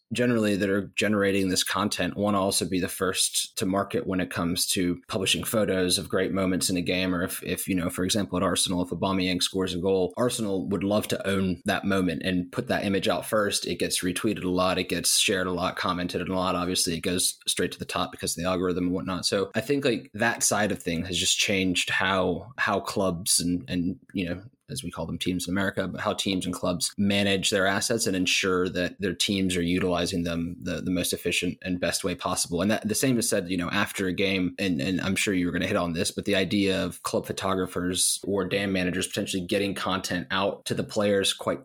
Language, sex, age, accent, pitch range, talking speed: English, male, 20-39, American, 90-100 Hz, 240 wpm